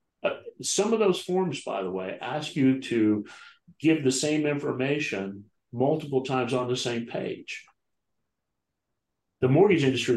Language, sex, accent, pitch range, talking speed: English, male, American, 115-140 Hz, 135 wpm